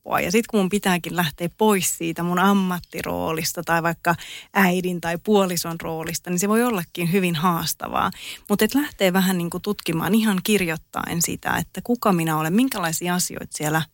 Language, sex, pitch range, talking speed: Finnish, female, 170-210 Hz, 155 wpm